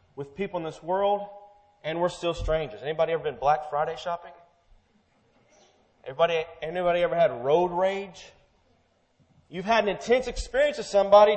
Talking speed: 145 wpm